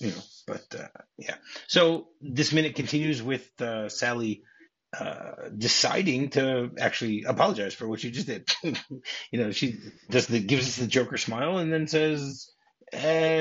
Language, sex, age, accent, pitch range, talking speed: English, male, 30-49, American, 110-145 Hz, 160 wpm